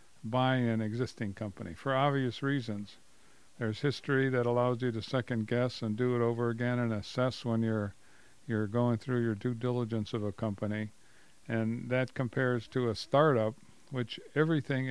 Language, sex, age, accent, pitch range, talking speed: English, male, 50-69, American, 115-135 Hz, 165 wpm